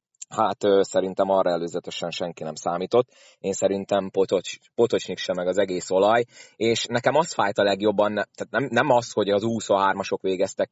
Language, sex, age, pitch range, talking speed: Hungarian, male, 30-49, 95-125 Hz, 160 wpm